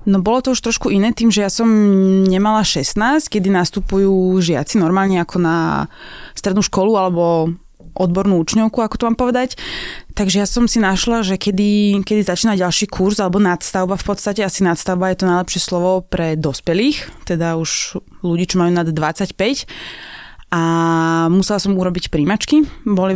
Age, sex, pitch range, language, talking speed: 20-39, female, 175-210 Hz, Slovak, 165 wpm